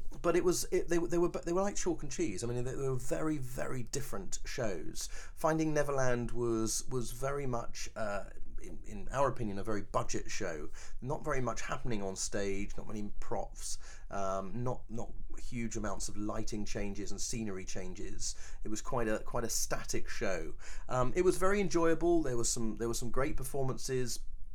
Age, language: 30-49, English